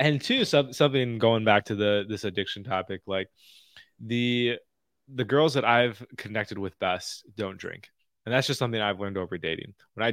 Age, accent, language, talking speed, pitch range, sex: 20-39, American, English, 185 wpm, 100-120 Hz, male